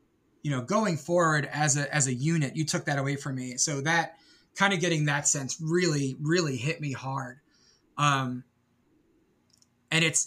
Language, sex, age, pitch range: English, male, 20-39, 140-175 Hz